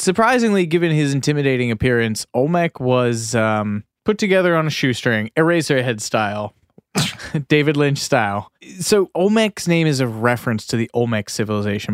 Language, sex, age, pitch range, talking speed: English, male, 20-39, 115-170 Hz, 145 wpm